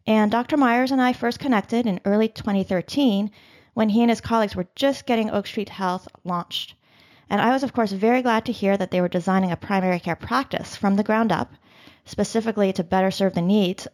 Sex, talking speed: female, 210 wpm